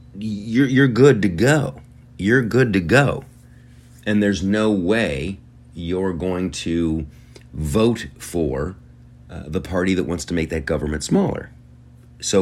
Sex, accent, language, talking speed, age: male, American, English, 140 wpm, 40-59